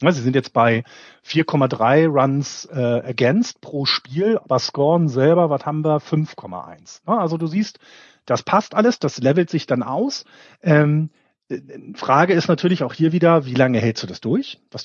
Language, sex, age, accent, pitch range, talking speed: German, male, 40-59, German, 125-160 Hz, 170 wpm